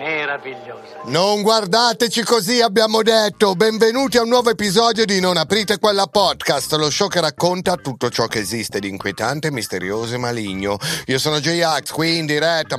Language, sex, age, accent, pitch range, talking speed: Italian, male, 40-59, native, 110-175 Hz, 170 wpm